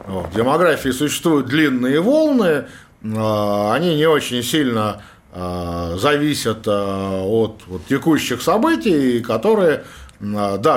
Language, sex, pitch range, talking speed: Russian, male, 105-145 Hz, 95 wpm